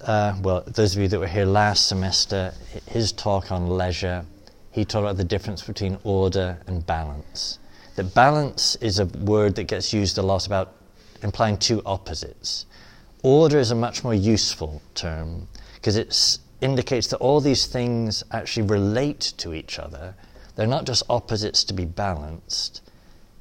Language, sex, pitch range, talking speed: English, male, 95-115 Hz, 160 wpm